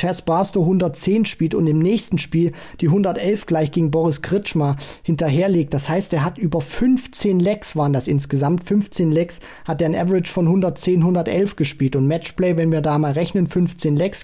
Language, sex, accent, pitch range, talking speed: German, male, German, 150-175 Hz, 185 wpm